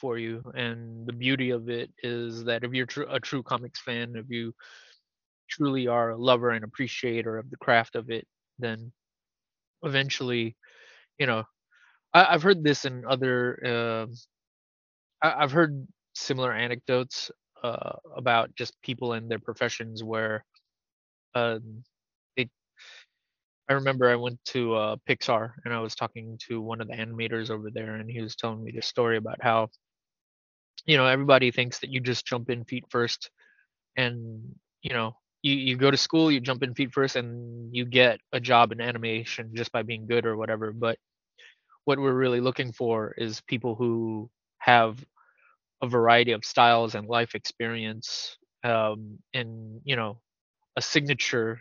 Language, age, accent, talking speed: English, 20-39, American, 160 wpm